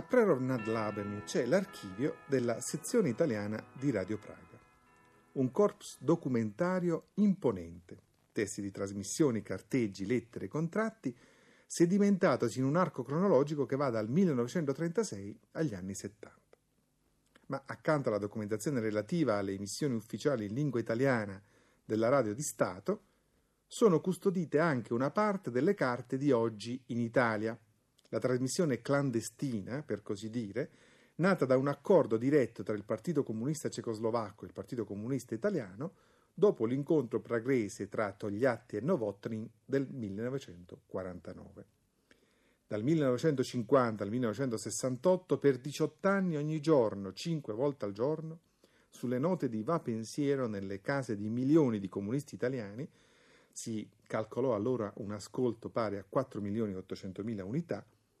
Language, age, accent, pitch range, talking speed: Italian, 40-59, native, 110-150 Hz, 130 wpm